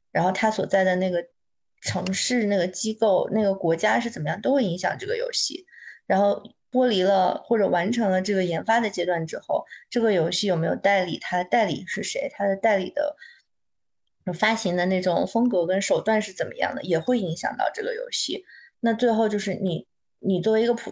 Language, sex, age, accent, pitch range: Chinese, female, 20-39, native, 185-230 Hz